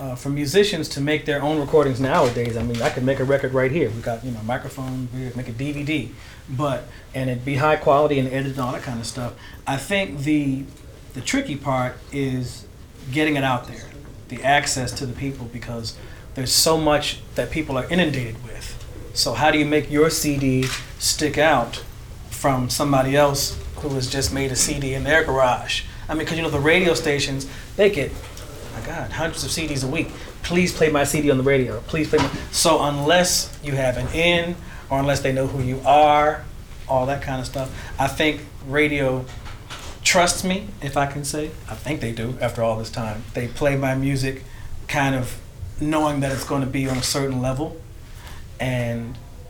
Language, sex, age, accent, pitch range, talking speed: English, male, 40-59, American, 120-145 Hz, 200 wpm